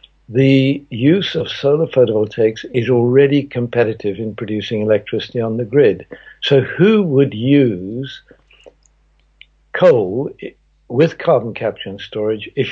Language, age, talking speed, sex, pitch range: English, 60-79, 120 wpm, male, 110-140 Hz